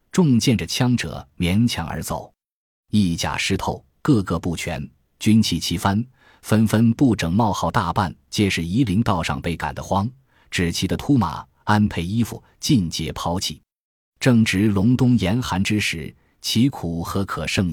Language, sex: Chinese, male